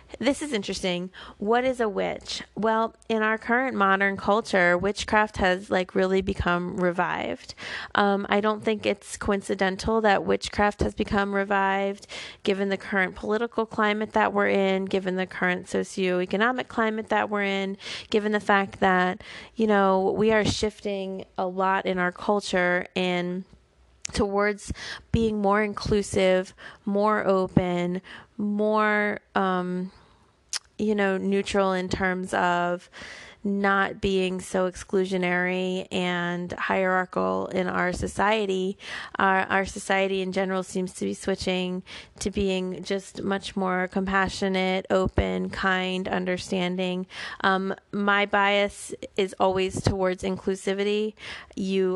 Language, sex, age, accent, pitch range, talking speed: English, female, 30-49, American, 185-200 Hz, 125 wpm